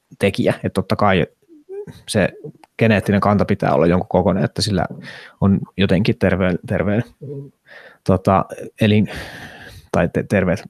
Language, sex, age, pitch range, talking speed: Finnish, male, 20-39, 95-110 Hz, 120 wpm